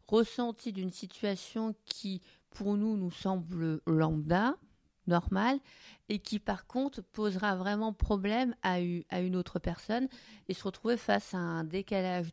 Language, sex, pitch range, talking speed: French, female, 175-230 Hz, 135 wpm